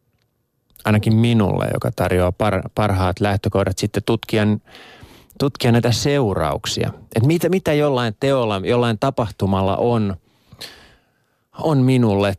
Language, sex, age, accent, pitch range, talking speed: Finnish, male, 30-49, native, 95-120 Hz, 100 wpm